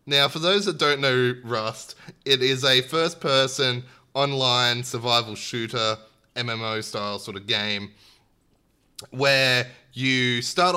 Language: English